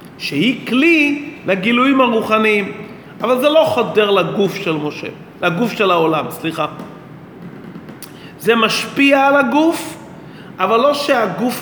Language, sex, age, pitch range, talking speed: Hebrew, male, 40-59, 180-250 Hz, 115 wpm